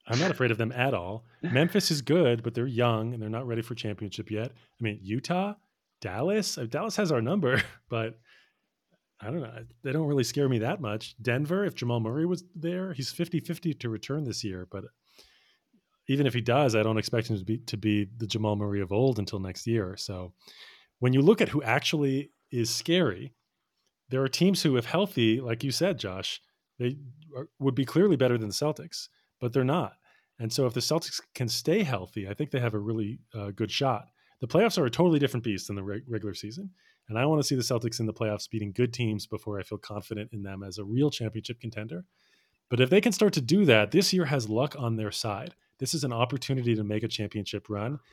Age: 30-49